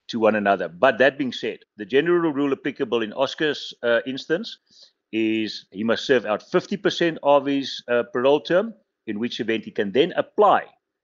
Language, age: English, 60-79